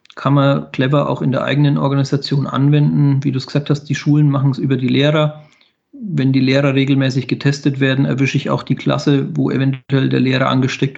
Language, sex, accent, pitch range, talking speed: German, male, German, 130-145 Hz, 200 wpm